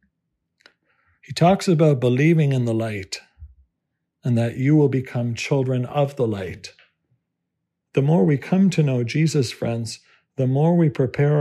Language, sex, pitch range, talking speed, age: English, male, 120-140 Hz, 145 wpm, 50-69